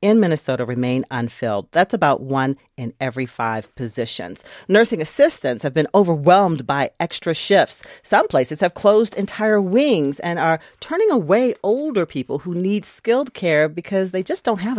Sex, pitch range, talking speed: female, 135-205 Hz, 160 wpm